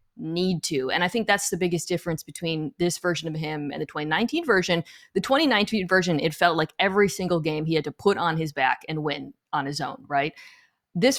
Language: English